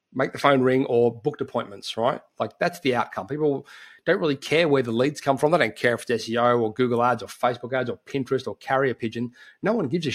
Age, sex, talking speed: 30-49, male, 250 wpm